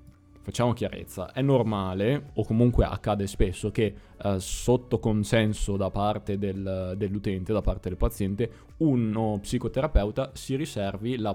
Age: 20-39